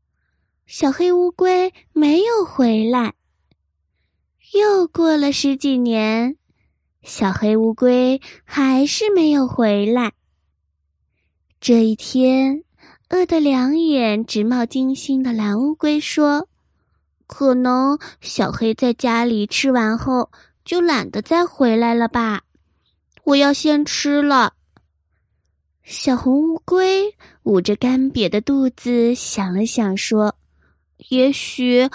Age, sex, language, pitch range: 20-39, female, Chinese, 215-290 Hz